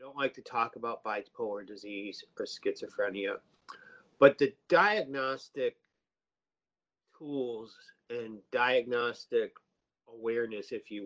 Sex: male